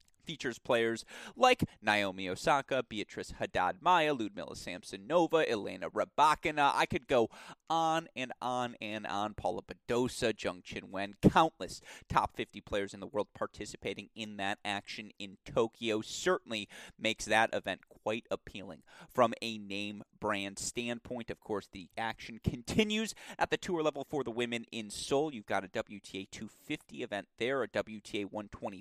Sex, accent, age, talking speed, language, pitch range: male, American, 30-49, 150 wpm, English, 105-150 Hz